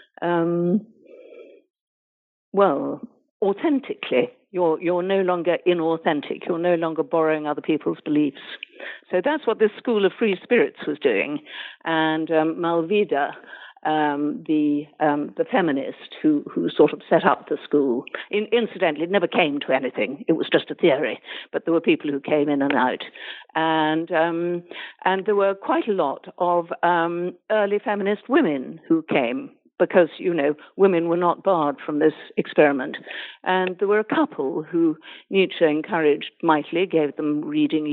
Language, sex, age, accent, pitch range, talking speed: English, female, 60-79, British, 155-230 Hz, 155 wpm